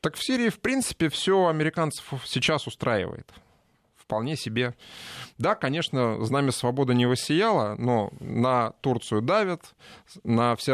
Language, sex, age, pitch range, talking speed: Russian, male, 20-39, 115-150 Hz, 130 wpm